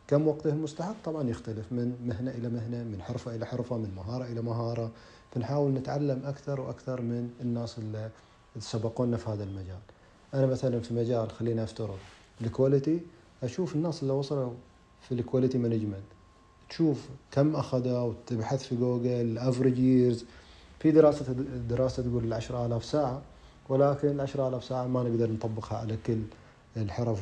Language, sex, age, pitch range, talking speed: Arabic, male, 30-49, 110-130 Hz, 145 wpm